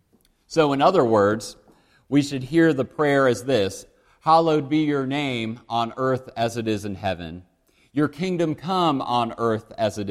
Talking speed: 170 wpm